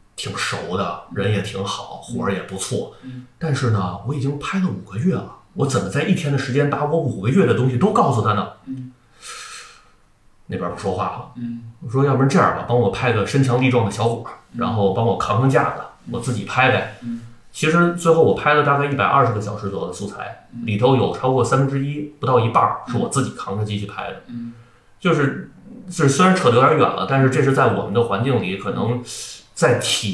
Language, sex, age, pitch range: Chinese, male, 30-49, 110-140 Hz